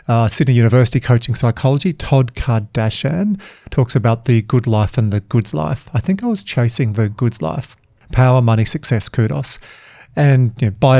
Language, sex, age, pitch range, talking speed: English, male, 40-59, 115-140 Hz, 165 wpm